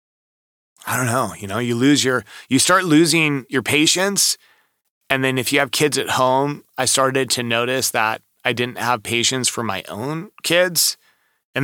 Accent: American